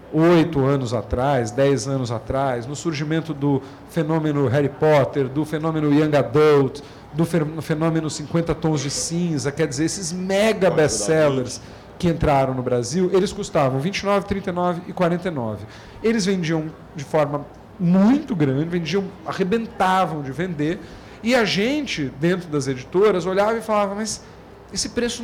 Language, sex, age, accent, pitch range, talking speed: Portuguese, male, 40-59, Brazilian, 145-210 Hz, 140 wpm